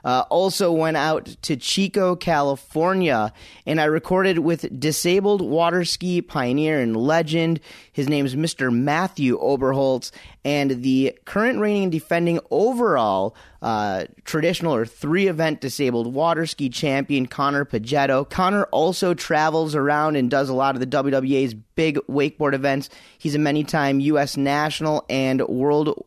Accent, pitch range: American, 135-170 Hz